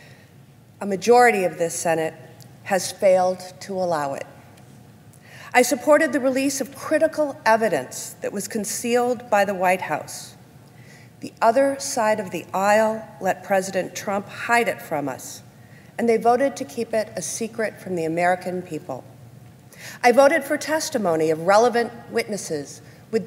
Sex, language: female, English